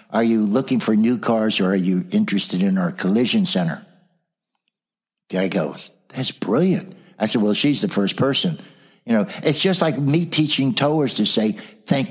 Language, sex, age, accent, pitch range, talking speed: English, male, 60-79, American, 125-205 Hz, 185 wpm